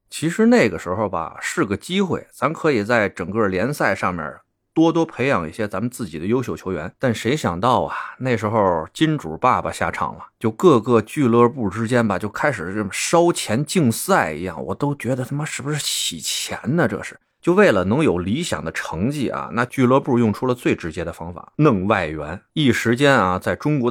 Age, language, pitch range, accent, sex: 30-49, Chinese, 90-125 Hz, native, male